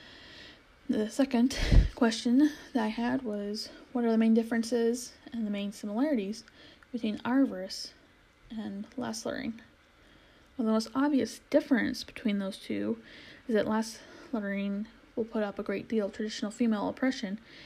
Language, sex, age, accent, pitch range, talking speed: English, female, 10-29, American, 205-250 Hz, 140 wpm